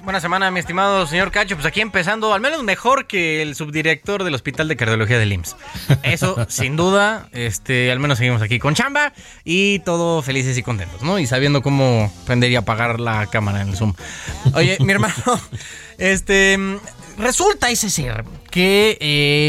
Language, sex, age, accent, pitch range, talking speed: Spanish, male, 30-49, Mexican, 130-195 Hz, 175 wpm